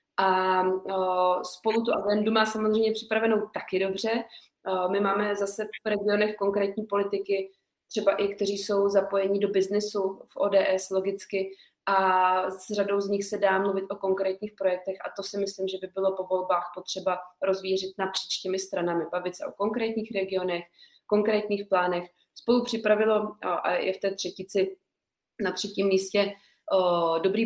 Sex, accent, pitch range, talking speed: female, native, 180-200 Hz, 155 wpm